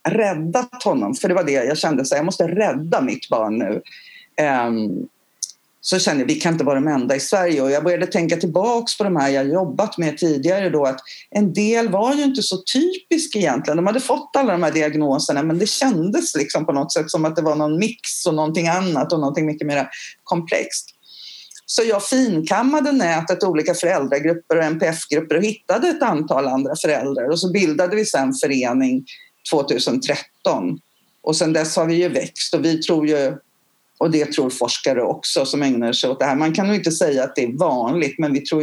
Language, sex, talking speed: Swedish, female, 205 wpm